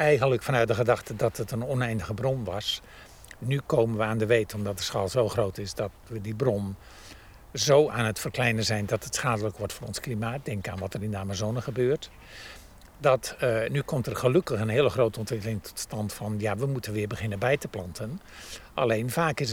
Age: 50-69